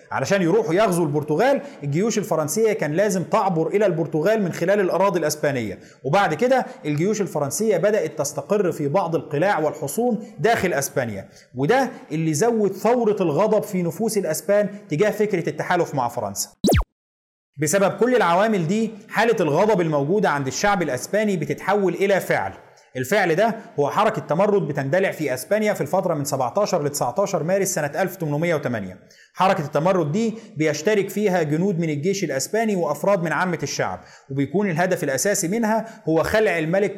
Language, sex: Arabic, male